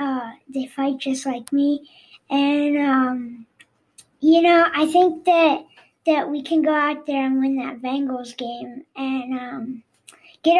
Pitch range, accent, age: 260-310 Hz, American, 20-39